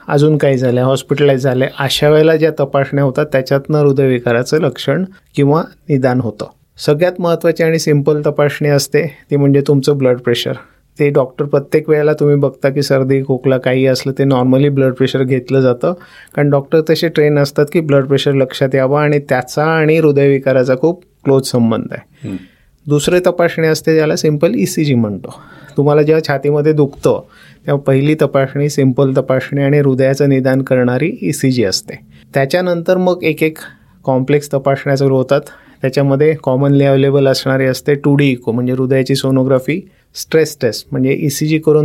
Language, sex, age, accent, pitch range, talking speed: Marathi, male, 30-49, native, 135-150 Hz, 155 wpm